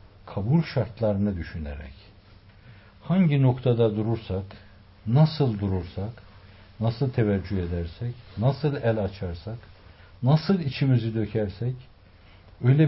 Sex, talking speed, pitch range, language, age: male, 85 wpm, 95-130 Hz, Turkish, 60-79